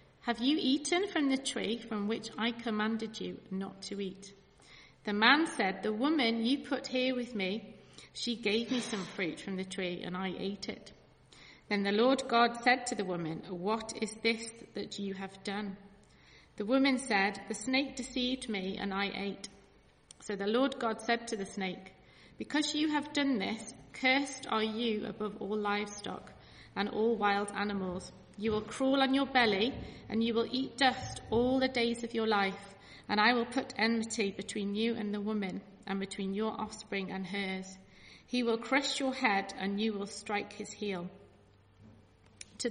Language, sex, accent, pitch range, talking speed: English, female, British, 200-240 Hz, 180 wpm